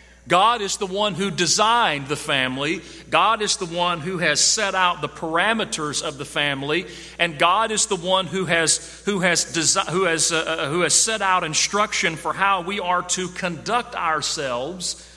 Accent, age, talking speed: American, 40-59, 180 wpm